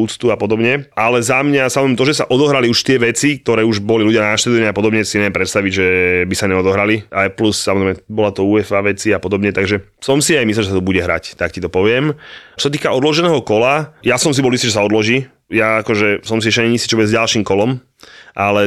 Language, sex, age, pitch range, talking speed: Slovak, male, 20-39, 105-125 Hz, 240 wpm